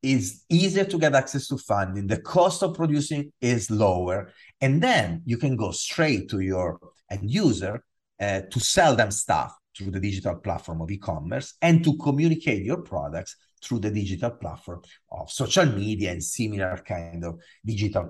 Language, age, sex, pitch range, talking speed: English, 40-59, male, 95-145 Hz, 170 wpm